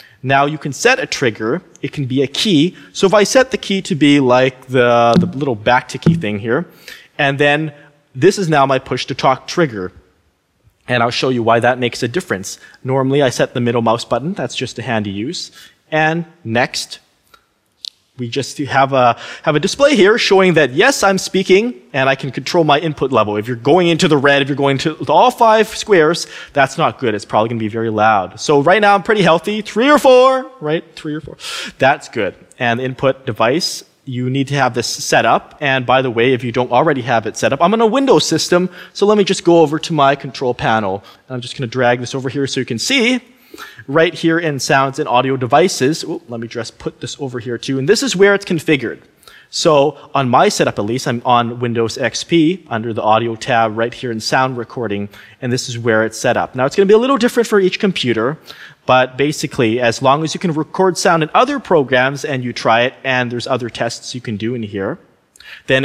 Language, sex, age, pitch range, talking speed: English, male, 20-39, 120-160 Hz, 230 wpm